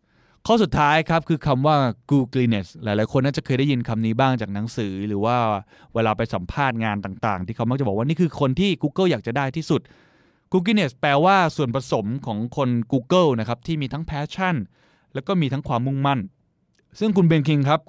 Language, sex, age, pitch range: Thai, male, 20-39, 115-160 Hz